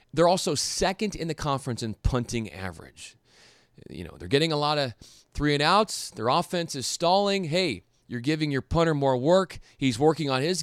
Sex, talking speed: male, 190 wpm